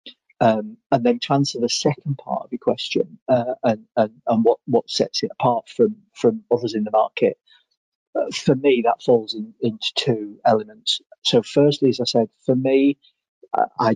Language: English